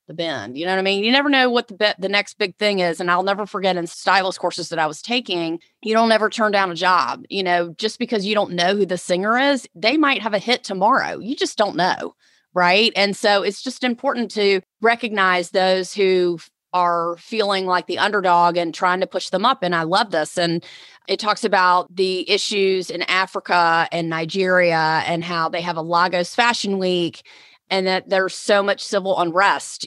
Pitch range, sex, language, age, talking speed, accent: 170-205 Hz, female, English, 30-49, 215 wpm, American